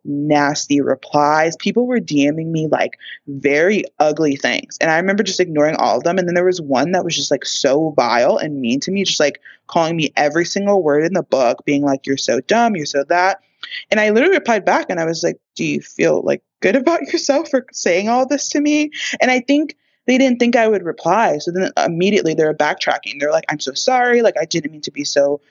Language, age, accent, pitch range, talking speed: English, 20-39, American, 150-220 Hz, 235 wpm